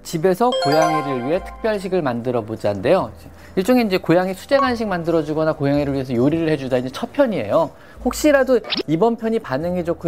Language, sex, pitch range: Korean, male, 125-195 Hz